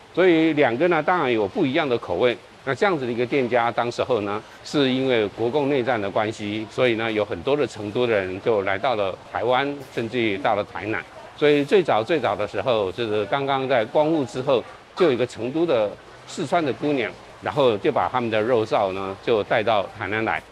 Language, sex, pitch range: Chinese, male, 110-140 Hz